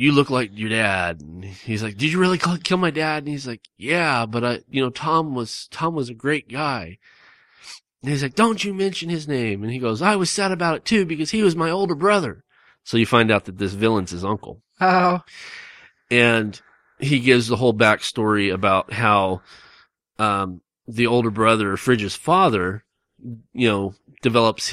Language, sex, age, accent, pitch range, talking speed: English, male, 30-49, American, 100-135 Hz, 190 wpm